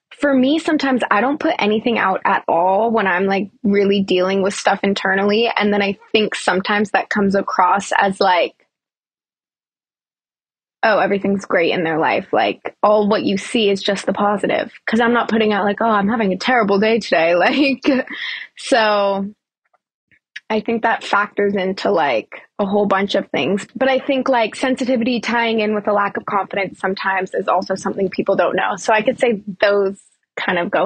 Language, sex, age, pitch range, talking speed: English, female, 20-39, 195-245 Hz, 185 wpm